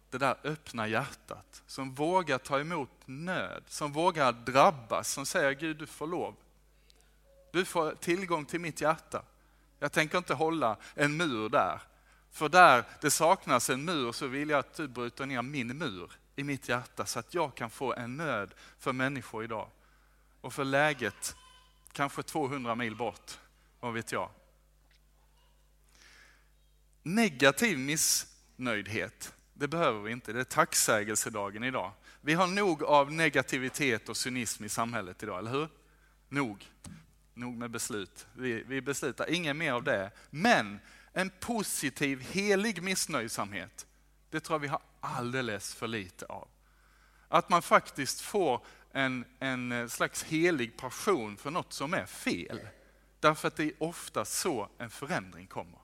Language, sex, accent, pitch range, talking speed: Swedish, male, native, 120-160 Hz, 150 wpm